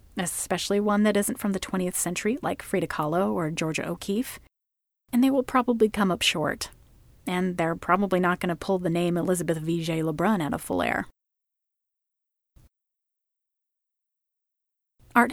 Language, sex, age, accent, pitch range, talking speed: English, female, 30-49, American, 185-230 Hz, 155 wpm